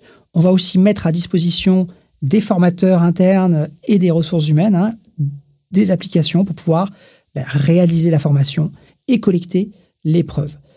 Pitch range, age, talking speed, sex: 150-190 Hz, 40-59, 145 wpm, male